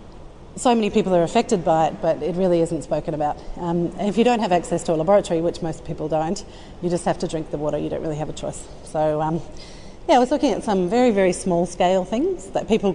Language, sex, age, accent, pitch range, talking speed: English, female, 30-49, Australian, 170-195 Hz, 250 wpm